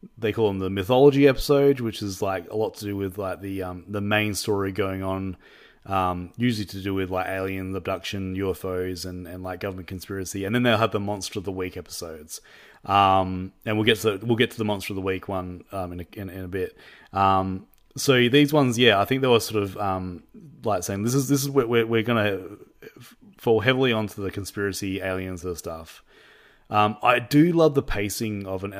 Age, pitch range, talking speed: 30-49, 95-110 Hz, 220 wpm